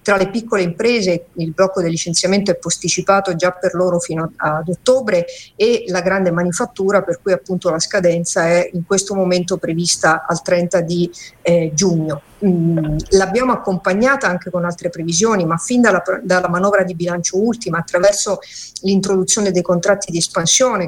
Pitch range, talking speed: 175-200 Hz, 160 wpm